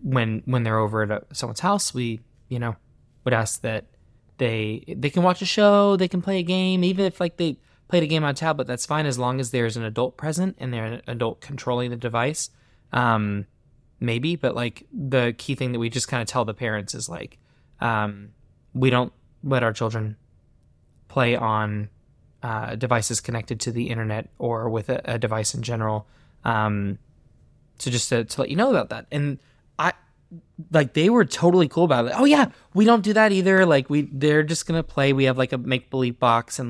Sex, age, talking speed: male, 20-39, 210 wpm